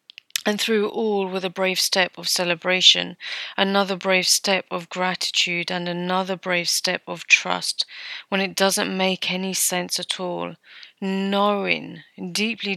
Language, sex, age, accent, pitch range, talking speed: English, female, 30-49, British, 180-200 Hz, 140 wpm